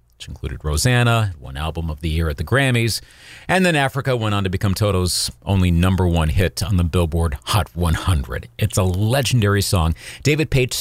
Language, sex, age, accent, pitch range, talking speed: English, male, 40-59, American, 90-125 Hz, 190 wpm